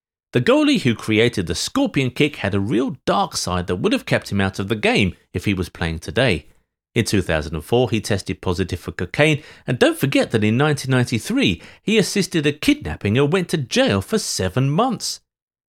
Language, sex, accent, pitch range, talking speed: English, male, British, 95-150 Hz, 190 wpm